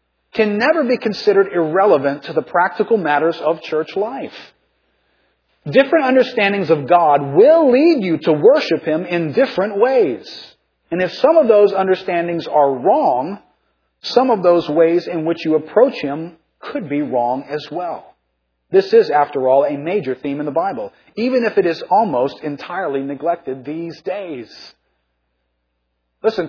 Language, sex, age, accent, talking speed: English, male, 40-59, American, 150 wpm